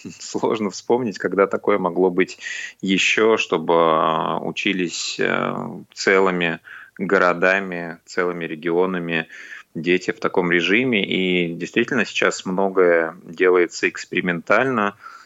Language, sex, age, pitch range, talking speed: Russian, male, 20-39, 85-100 Hz, 90 wpm